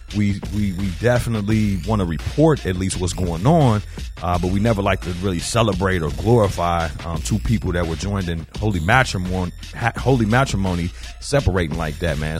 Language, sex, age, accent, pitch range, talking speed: English, male, 30-49, American, 90-125 Hz, 185 wpm